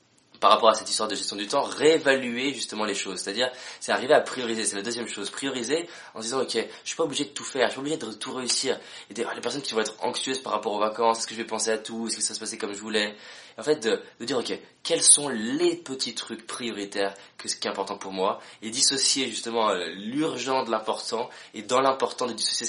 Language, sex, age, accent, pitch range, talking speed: French, male, 20-39, French, 110-135 Hz, 265 wpm